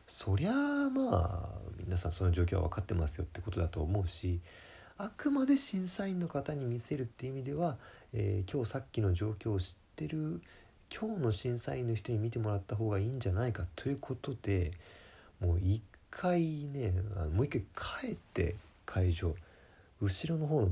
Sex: male